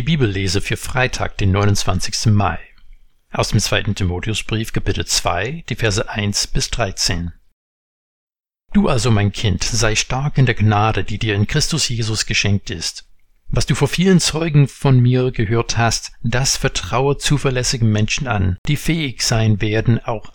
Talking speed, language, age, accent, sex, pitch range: 160 wpm, German, 60-79, German, male, 105-135 Hz